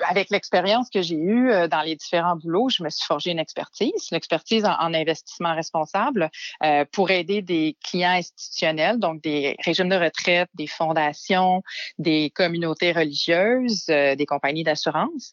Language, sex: French, female